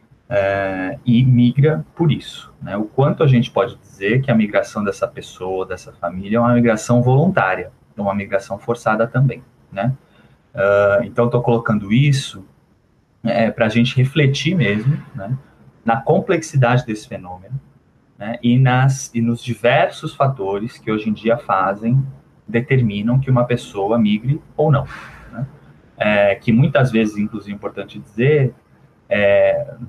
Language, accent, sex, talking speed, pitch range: Portuguese, Brazilian, male, 150 wpm, 105-135 Hz